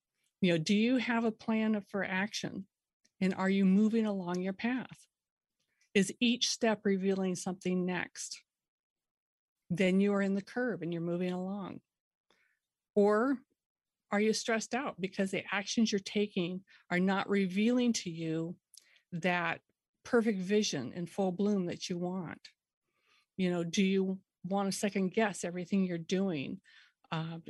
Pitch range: 180-210 Hz